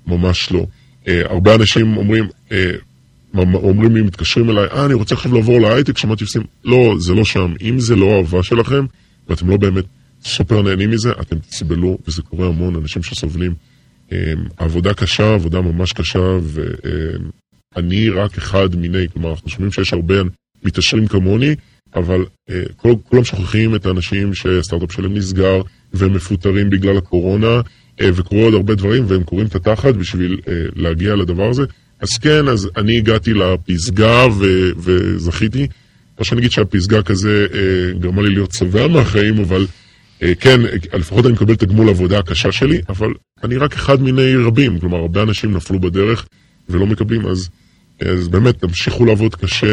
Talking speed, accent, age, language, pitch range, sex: 165 wpm, Canadian, 20-39, Hebrew, 90-115 Hz, female